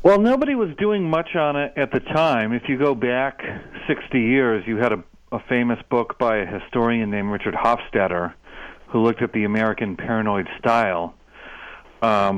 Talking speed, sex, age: 175 wpm, male, 50-69